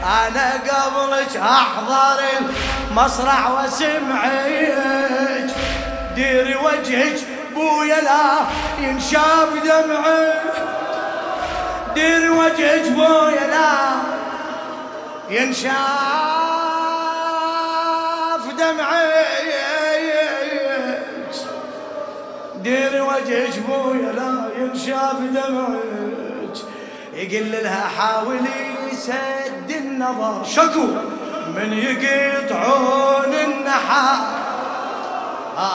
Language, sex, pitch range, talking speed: Arabic, male, 265-305 Hz, 50 wpm